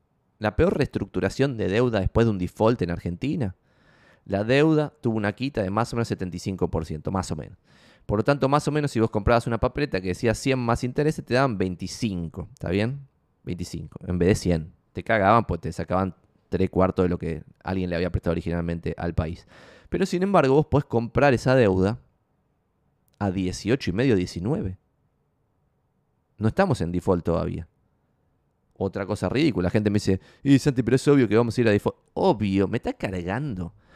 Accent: Argentinian